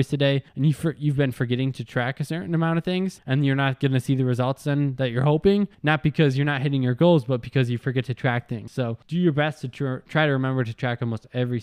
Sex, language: male, English